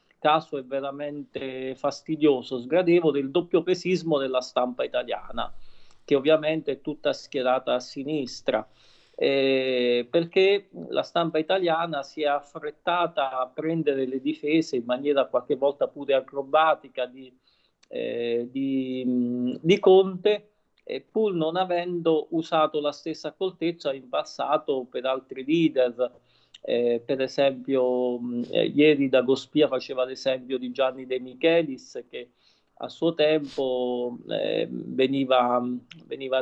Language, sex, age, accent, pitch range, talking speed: Italian, male, 40-59, native, 130-160 Hz, 120 wpm